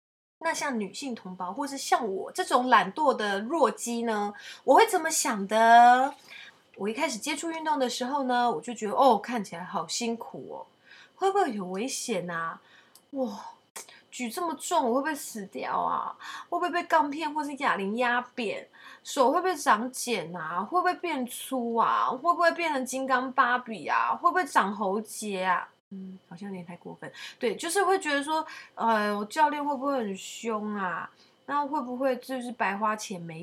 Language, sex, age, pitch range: Chinese, female, 20-39, 200-295 Hz